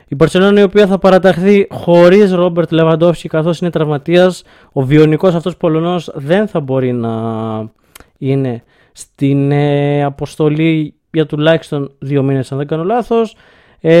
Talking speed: 145 wpm